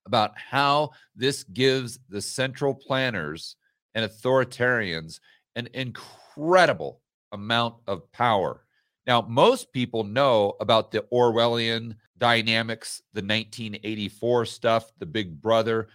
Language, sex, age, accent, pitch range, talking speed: English, male, 40-59, American, 105-130 Hz, 105 wpm